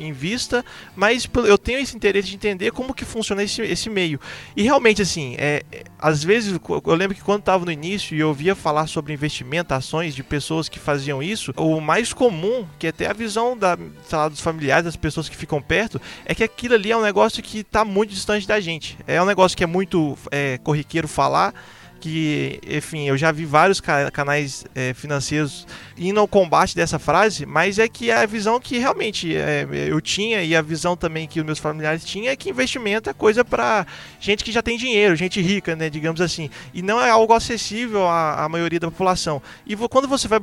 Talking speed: 210 wpm